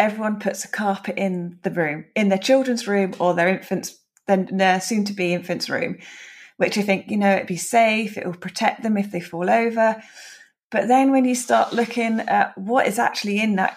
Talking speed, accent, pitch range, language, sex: 205 wpm, British, 190-230 Hz, English, female